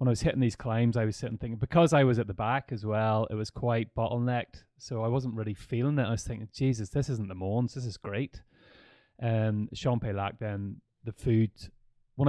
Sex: male